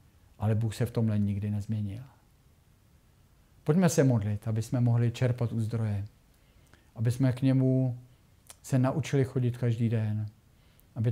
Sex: male